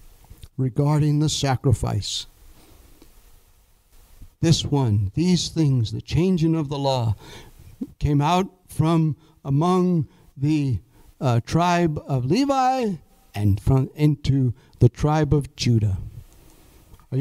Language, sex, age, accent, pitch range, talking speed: English, male, 60-79, American, 125-185 Hz, 100 wpm